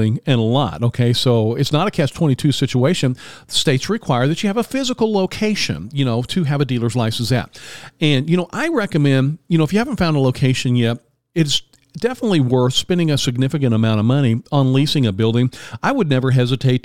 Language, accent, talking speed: English, American, 205 wpm